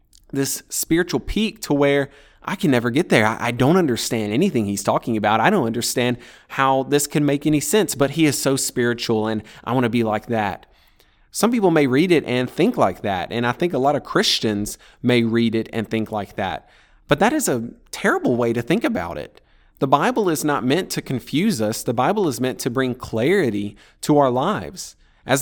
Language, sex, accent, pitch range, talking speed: English, male, American, 115-145 Hz, 210 wpm